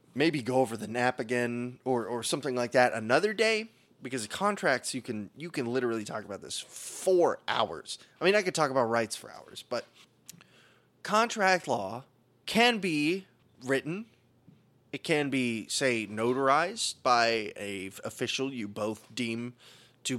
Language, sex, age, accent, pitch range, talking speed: English, male, 20-39, American, 120-160 Hz, 155 wpm